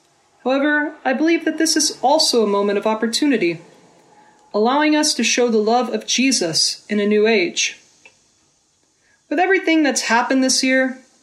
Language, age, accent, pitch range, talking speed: English, 30-49, American, 215-290 Hz, 155 wpm